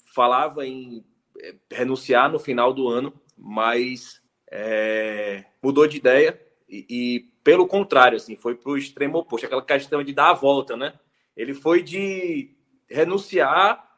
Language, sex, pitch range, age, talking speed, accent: Portuguese, male, 130-180 Hz, 20-39, 140 wpm, Brazilian